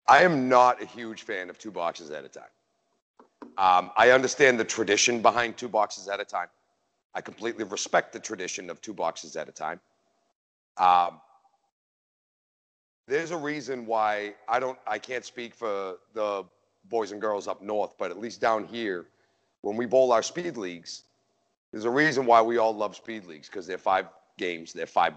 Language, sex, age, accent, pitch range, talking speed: English, male, 40-59, American, 100-120 Hz, 180 wpm